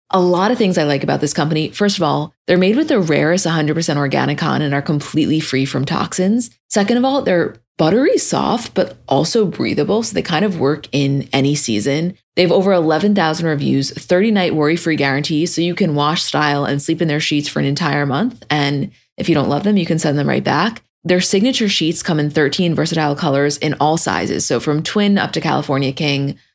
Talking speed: 215 wpm